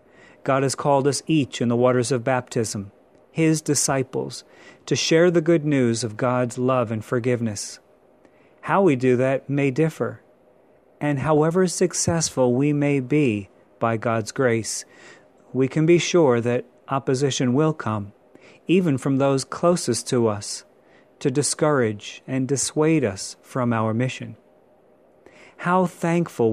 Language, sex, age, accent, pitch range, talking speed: English, male, 40-59, American, 120-150 Hz, 140 wpm